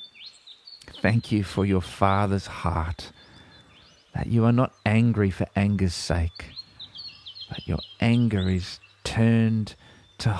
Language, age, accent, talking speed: English, 40-59, Australian, 115 wpm